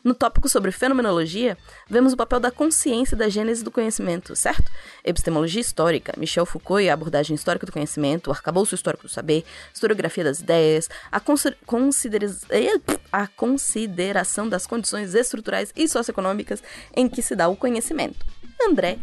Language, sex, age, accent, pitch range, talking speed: Portuguese, female, 20-39, Brazilian, 185-255 Hz, 160 wpm